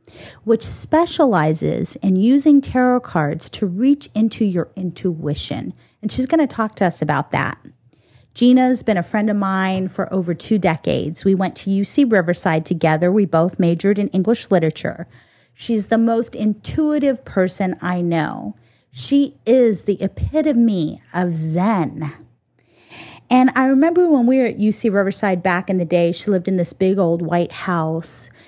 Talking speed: 160 wpm